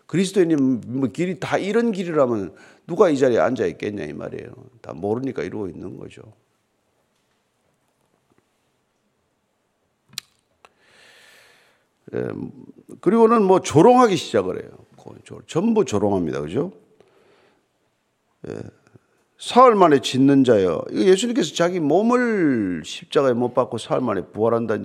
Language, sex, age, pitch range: Korean, male, 50-69, 135-200 Hz